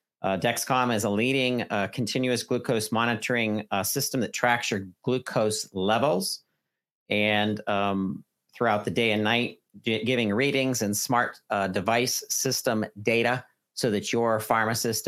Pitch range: 105-125 Hz